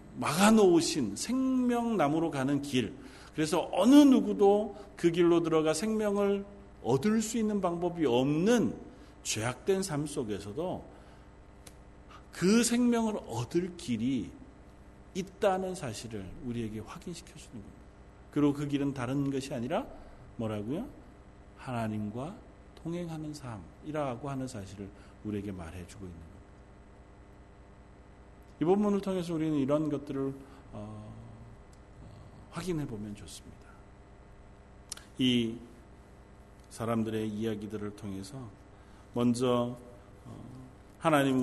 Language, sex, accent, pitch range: Korean, male, native, 100-150 Hz